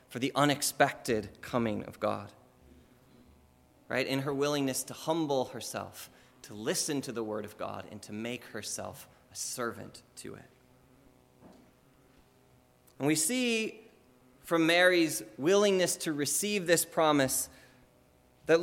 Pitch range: 110-170 Hz